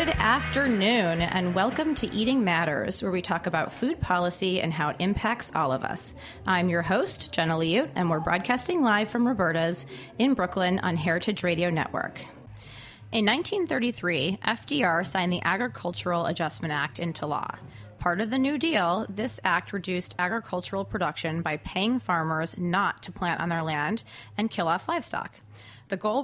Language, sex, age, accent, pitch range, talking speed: English, female, 30-49, American, 170-215 Hz, 165 wpm